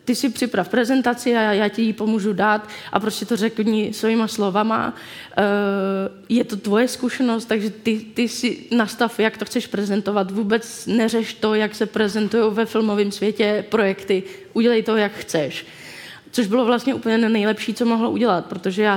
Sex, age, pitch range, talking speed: female, 20-39, 200-225 Hz, 170 wpm